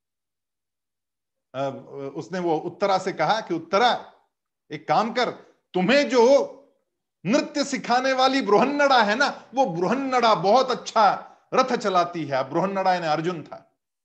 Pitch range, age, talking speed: 175-245 Hz, 50-69, 120 wpm